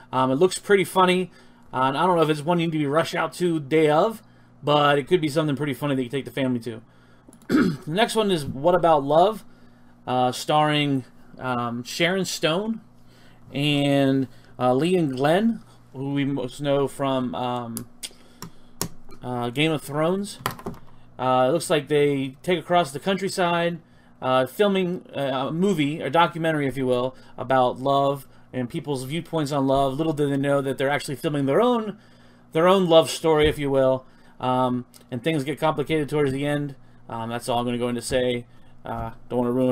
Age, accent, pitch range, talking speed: 30-49, American, 130-170 Hz, 190 wpm